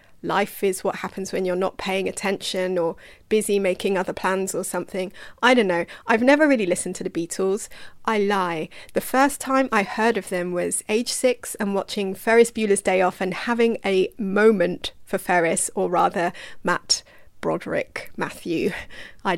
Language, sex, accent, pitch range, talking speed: English, female, British, 180-245 Hz, 175 wpm